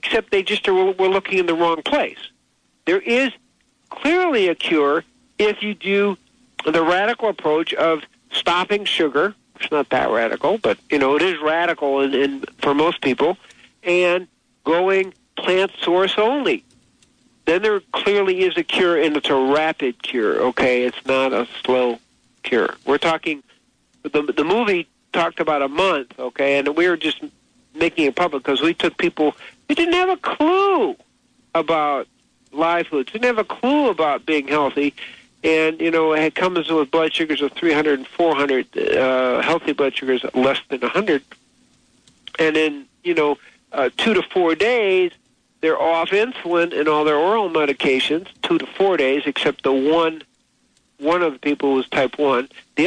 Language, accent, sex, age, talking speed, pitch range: English, American, male, 60-79, 170 wpm, 150-225 Hz